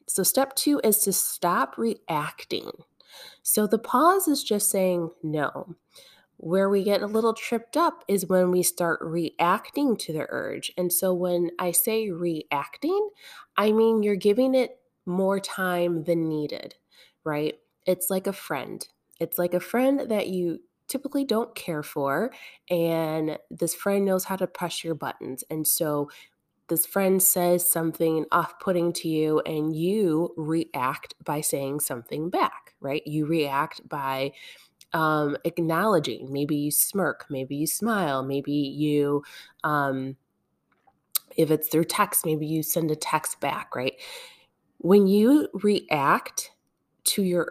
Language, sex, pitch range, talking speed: English, female, 160-210 Hz, 145 wpm